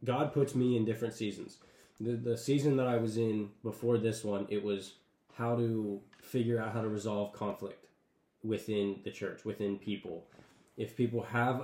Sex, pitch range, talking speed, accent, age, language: male, 105-130 Hz, 175 wpm, American, 20-39, English